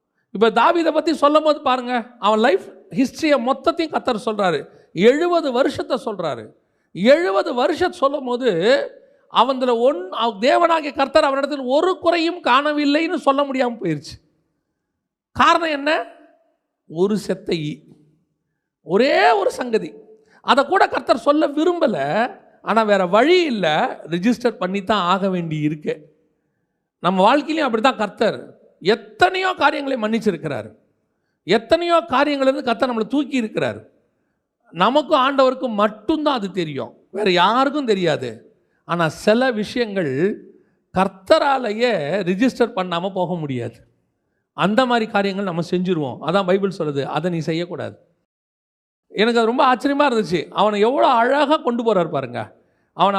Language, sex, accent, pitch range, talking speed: Tamil, male, native, 190-290 Hz, 120 wpm